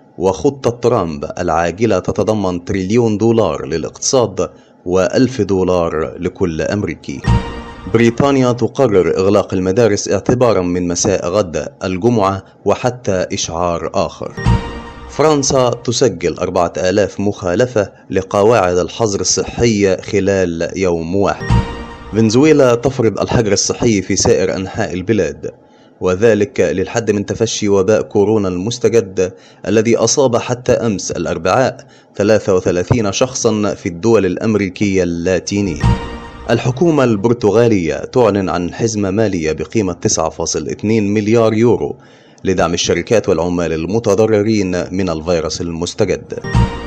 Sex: male